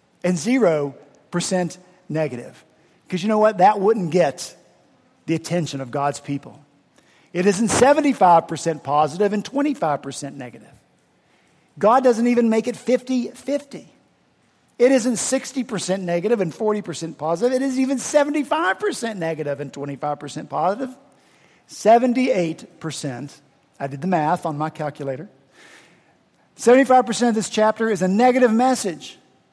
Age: 50-69